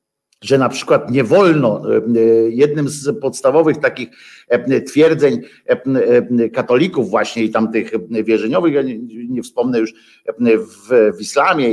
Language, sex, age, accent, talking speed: Polish, male, 50-69, native, 115 wpm